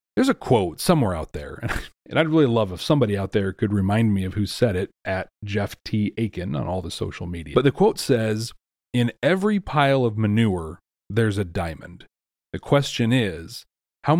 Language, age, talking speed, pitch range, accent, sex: English, 40-59, 195 wpm, 95-130 Hz, American, male